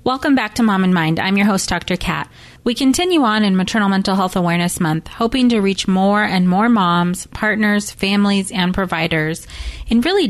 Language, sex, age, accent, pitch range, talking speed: English, female, 30-49, American, 175-230 Hz, 190 wpm